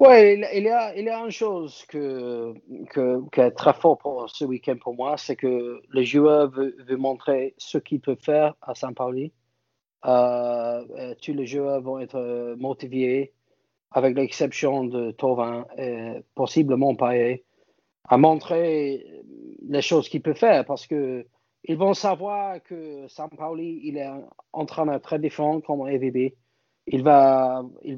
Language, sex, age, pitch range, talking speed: French, male, 40-59, 130-160 Hz, 150 wpm